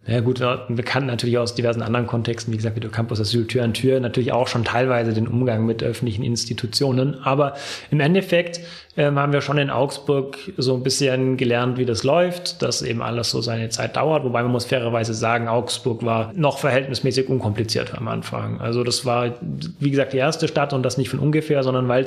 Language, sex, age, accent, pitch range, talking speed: German, male, 30-49, German, 120-140 Hz, 210 wpm